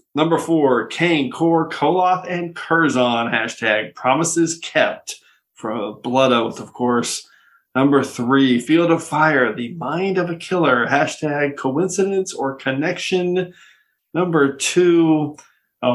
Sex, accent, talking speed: male, American, 120 wpm